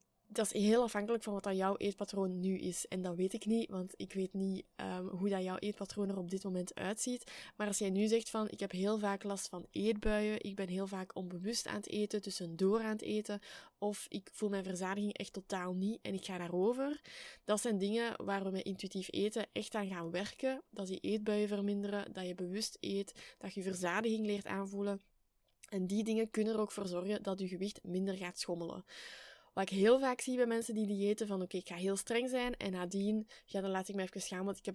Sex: female